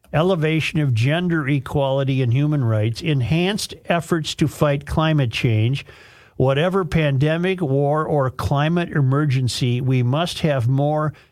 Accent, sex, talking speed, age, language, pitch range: American, male, 120 wpm, 50-69, English, 125-165 Hz